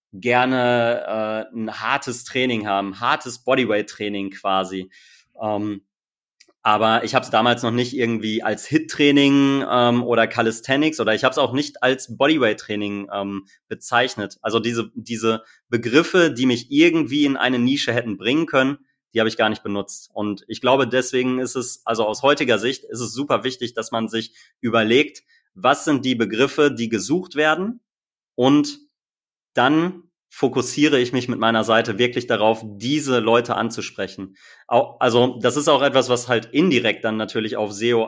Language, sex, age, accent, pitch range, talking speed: German, male, 30-49, German, 110-135 Hz, 160 wpm